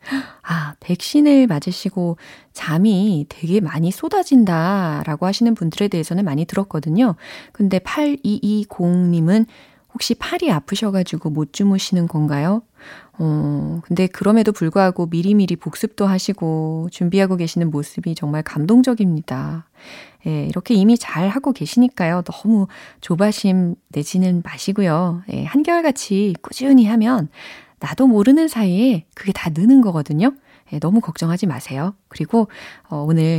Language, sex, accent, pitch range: Korean, female, native, 165-250 Hz